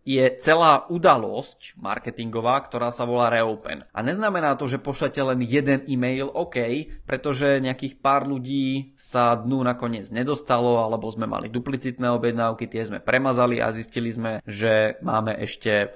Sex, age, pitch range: male, 20-39, 115-140 Hz